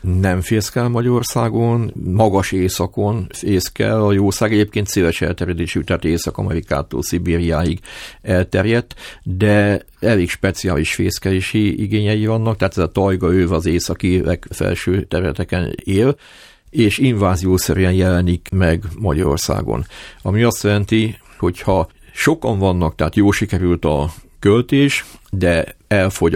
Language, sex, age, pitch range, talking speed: Hungarian, male, 50-69, 85-105 Hz, 110 wpm